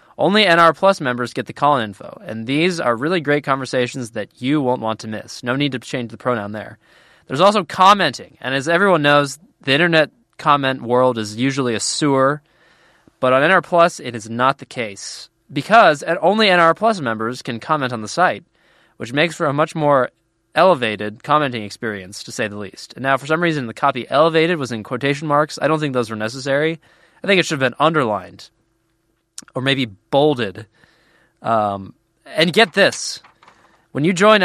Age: 20-39